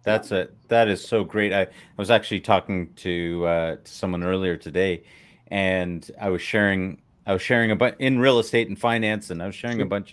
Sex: male